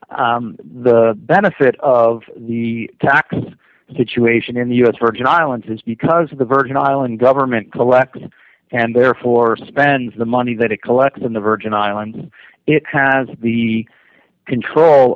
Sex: male